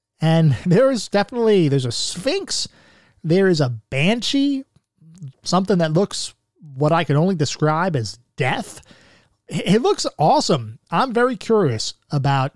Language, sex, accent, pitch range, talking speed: English, male, American, 135-180 Hz, 135 wpm